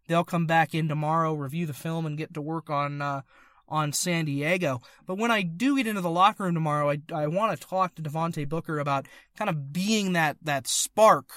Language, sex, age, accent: English, male, 30-49, American